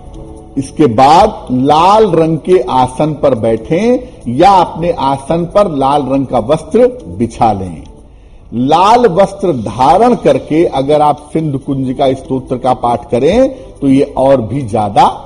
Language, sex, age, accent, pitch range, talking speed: Gujarati, male, 50-69, native, 130-170 Hz, 130 wpm